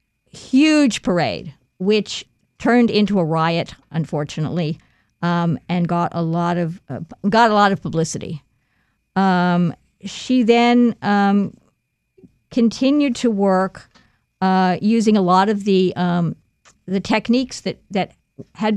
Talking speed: 125 wpm